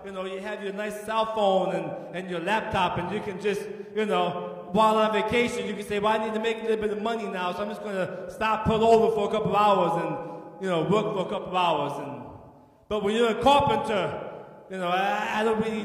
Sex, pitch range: male, 170-225 Hz